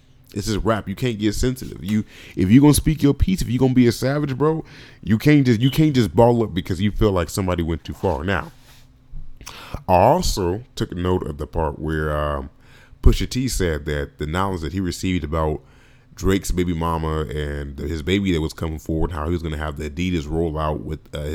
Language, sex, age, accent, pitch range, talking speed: English, male, 30-49, American, 80-120 Hz, 220 wpm